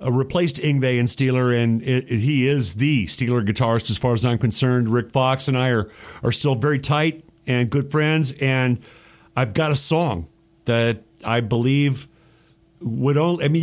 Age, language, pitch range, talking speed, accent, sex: 50-69, English, 125-155 Hz, 175 wpm, American, male